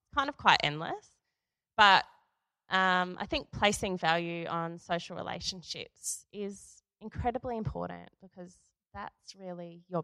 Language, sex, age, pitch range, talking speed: English, female, 20-39, 150-180 Hz, 120 wpm